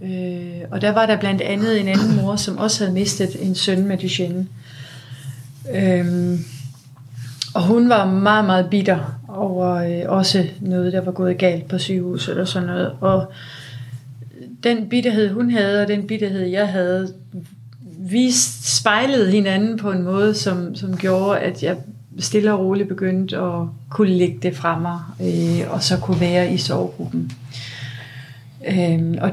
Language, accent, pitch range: Danish, native, 150-200 Hz